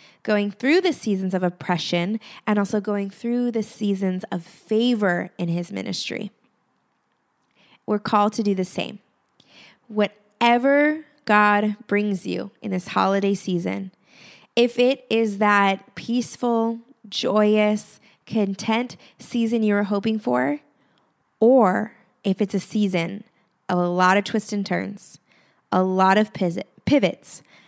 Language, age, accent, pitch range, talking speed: English, 20-39, American, 195-225 Hz, 130 wpm